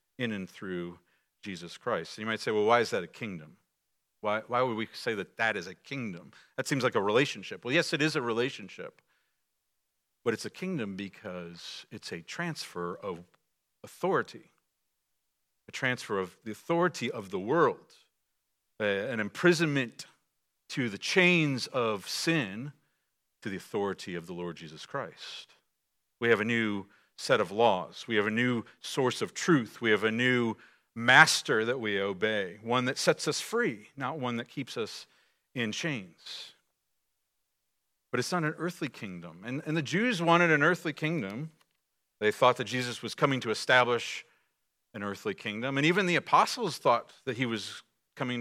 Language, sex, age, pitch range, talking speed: English, male, 50-69, 105-155 Hz, 170 wpm